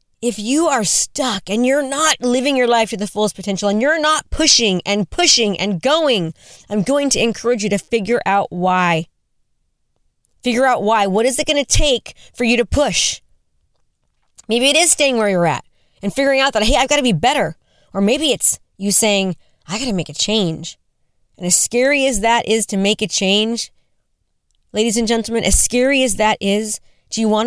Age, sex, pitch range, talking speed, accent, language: 30-49, female, 200-245 Hz, 205 wpm, American, English